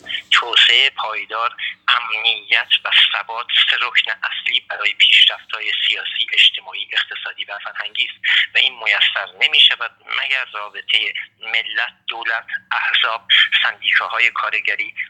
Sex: male